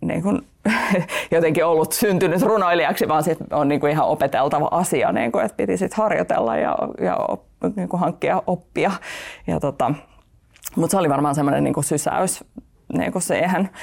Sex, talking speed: female, 150 wpm